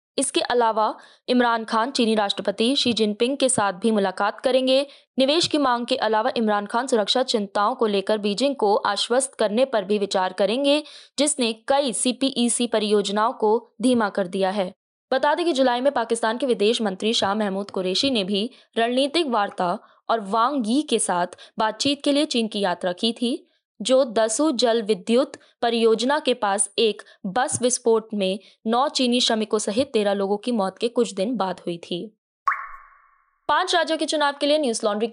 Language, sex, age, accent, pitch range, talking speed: Hindi, female, 20-39, native, 215-275 Hz, 175 wpm